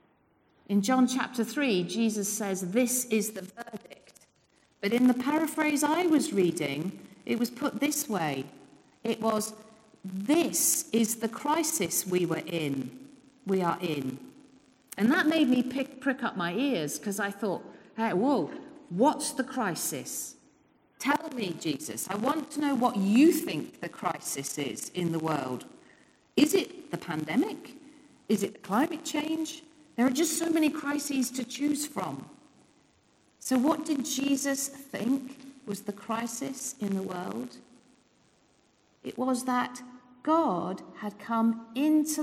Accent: British